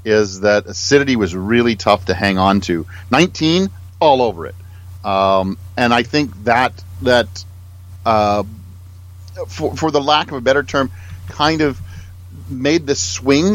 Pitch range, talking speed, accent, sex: 95-120 Hz, 150 wpm, American, male